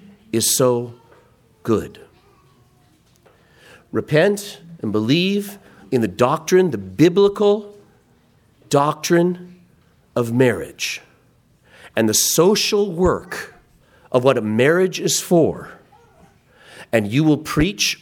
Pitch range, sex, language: 145-200 Hz, male, English